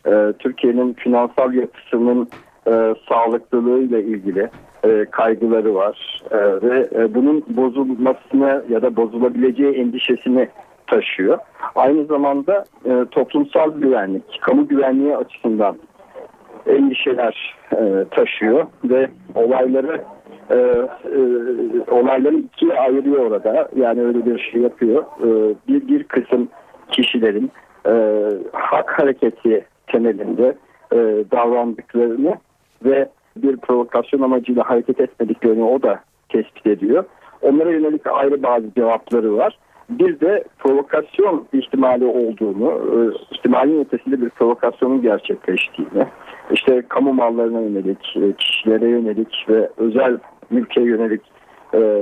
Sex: male